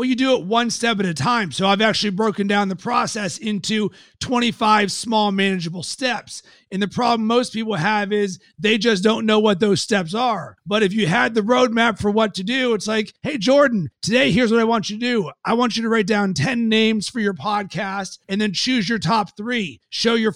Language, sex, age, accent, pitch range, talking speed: English, male, 30-49, American, 200-230 Hz, 225 wpm